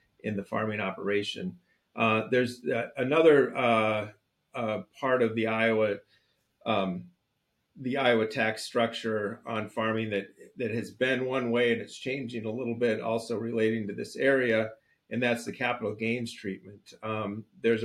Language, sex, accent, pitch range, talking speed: English, male, American, 105-120 Hz, 155 wpm